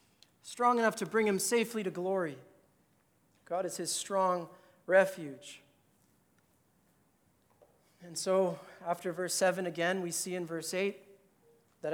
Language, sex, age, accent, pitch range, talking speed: English, male, 40-59, American, 190-265 Hz, 125 wpm